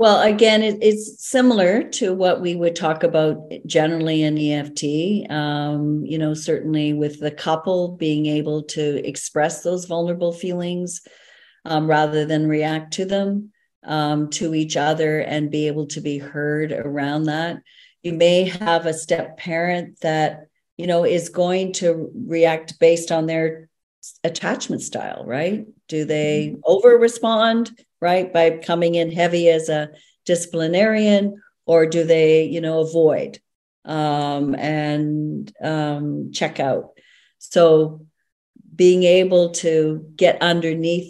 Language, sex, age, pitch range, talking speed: English, female, 50-69, 150-175 Hz, 135 wpm